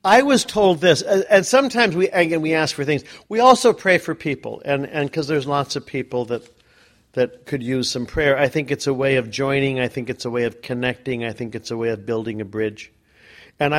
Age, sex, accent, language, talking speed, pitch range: 50-69, male, American, English, 235 wpm, 110-150 Hz